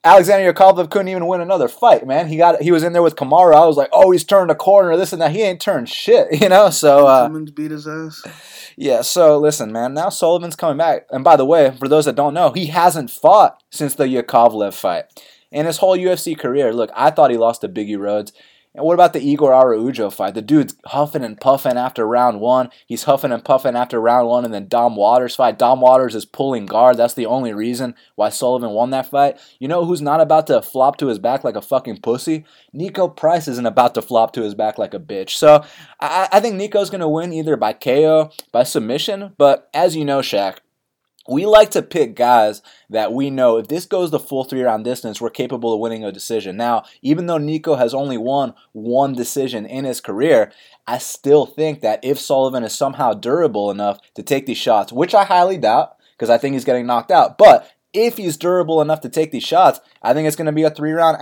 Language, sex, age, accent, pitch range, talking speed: English, male, 20-39, American, 125-165 Hz, 230 wpm